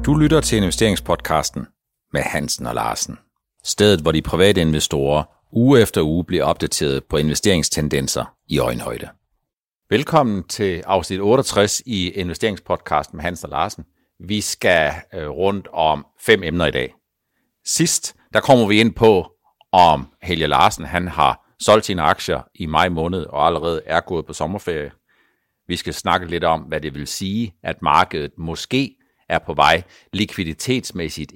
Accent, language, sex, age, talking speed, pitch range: native, Danish, male, 60-79, 150 wpm, 80-110 Hz